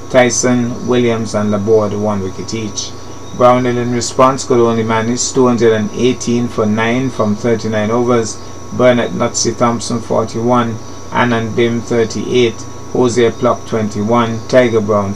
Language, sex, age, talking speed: English, male, 30-49, 125 wpm